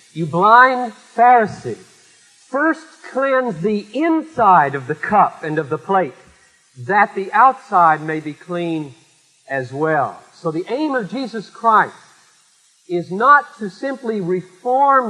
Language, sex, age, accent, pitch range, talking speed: English, male, 50-69, American, 155-215 Hz, 130 wpm